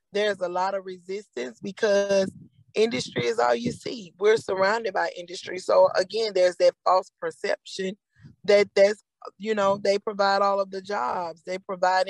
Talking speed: 165 wpm